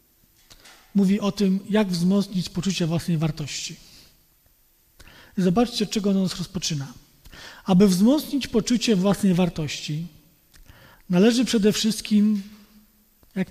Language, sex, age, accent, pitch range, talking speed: Polish, male, 40-59, native, 155-210 Hz, 100 wpm